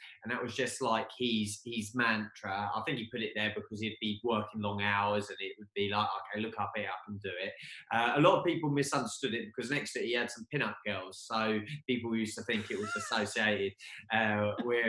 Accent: British